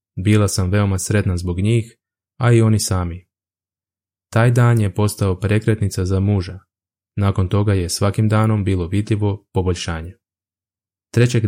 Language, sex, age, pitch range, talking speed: Croatian, male, 20-39, 95-110 Hz, 135 wpm